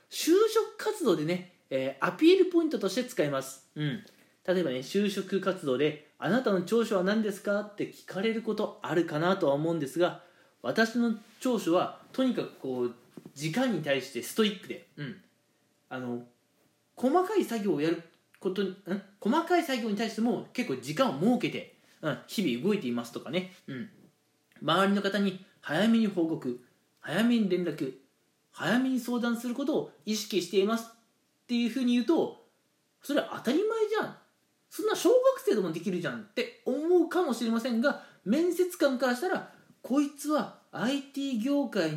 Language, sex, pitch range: Japanese, male, 175-260 Hz